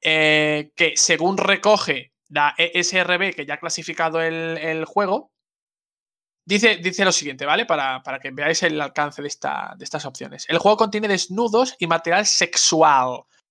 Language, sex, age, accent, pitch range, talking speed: English, male, 20-39, Spanish, 155-190 Hz, 155 wpm